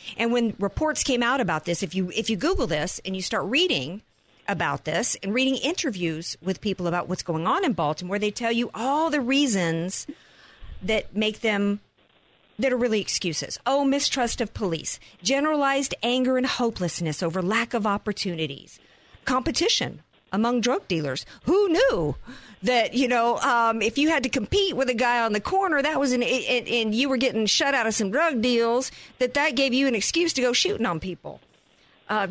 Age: 50-69